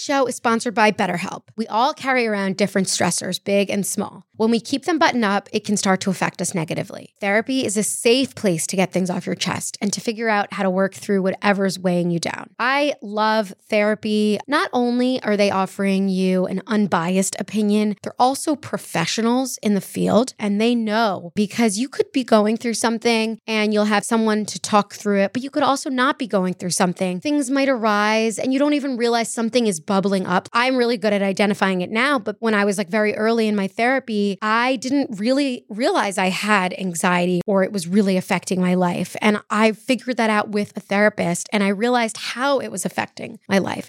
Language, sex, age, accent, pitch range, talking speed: English, female, 20-39, American, 195-240 Hz, 210 wpm